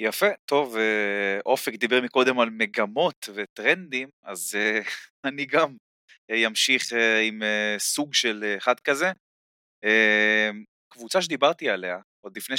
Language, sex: Hebrew, male